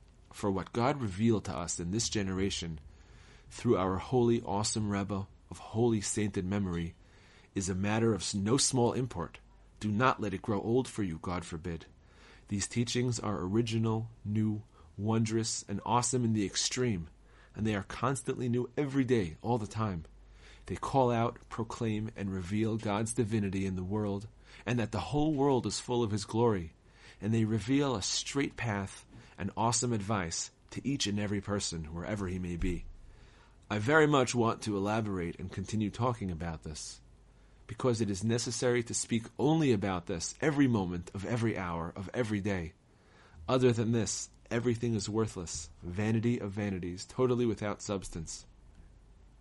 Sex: male